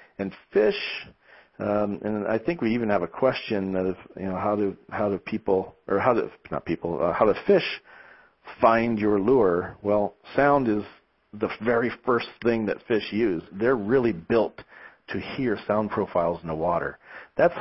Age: 40-59